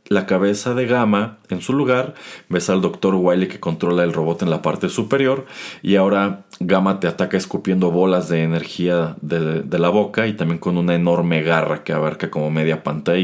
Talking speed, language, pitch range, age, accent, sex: 195 wpm, Spanish, 85-110 Hz, 30-49, Mexican, male